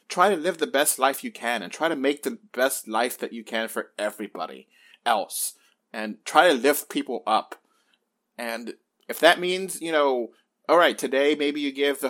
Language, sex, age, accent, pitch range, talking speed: English, male, 30-49, American, 125-155 Hz, 200 wpm